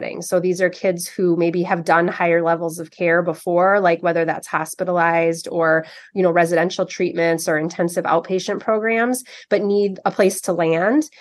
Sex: female